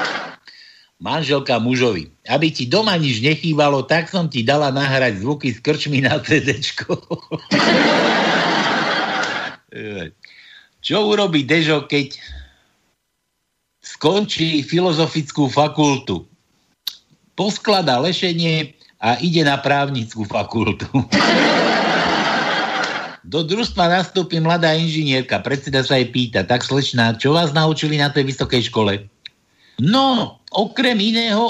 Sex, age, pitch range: male, 60-79, 125-185 Hz